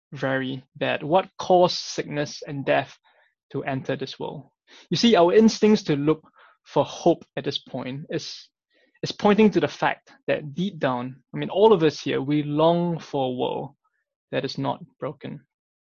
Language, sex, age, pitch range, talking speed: English, male, 20-39, 135-180 Hz, 175 wpm